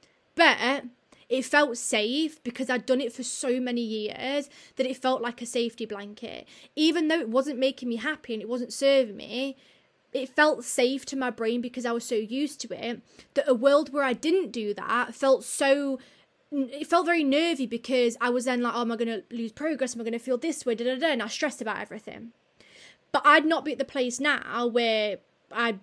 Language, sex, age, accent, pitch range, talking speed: English, female, 20-39, British, 230-270 Hz, 210 wpm